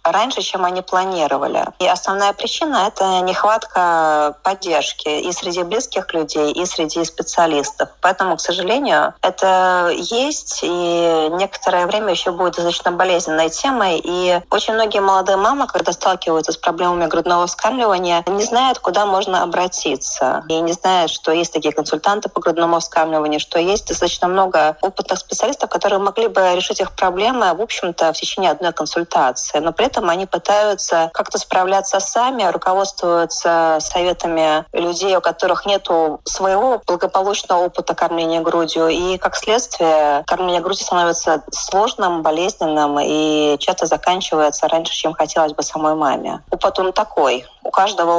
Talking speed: 145 wpm